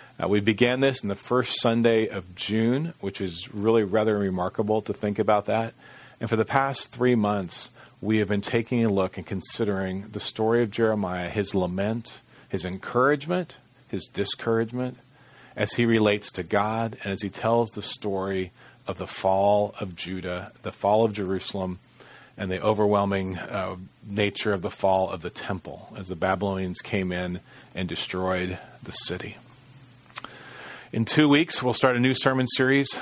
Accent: American